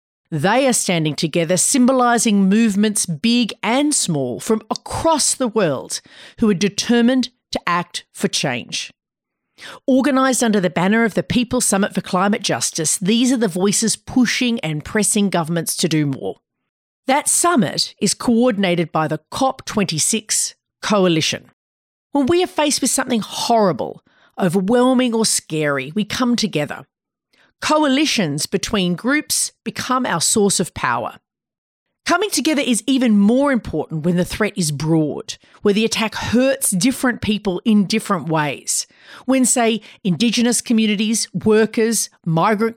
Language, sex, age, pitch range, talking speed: English, female, 40-59, 185-245 Hz, 135 wpm